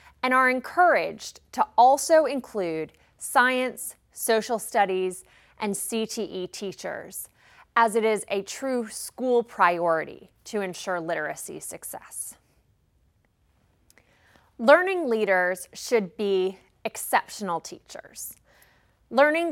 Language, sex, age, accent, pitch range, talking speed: English, female, 20-39, American, 185-260 Hz, 90 wpm